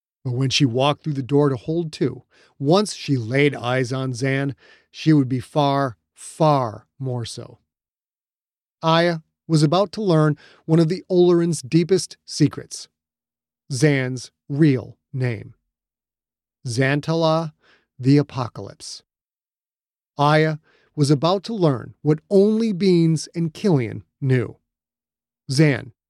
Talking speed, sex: 120 wpm, male